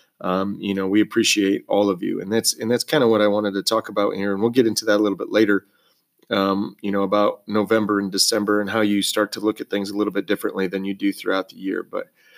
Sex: male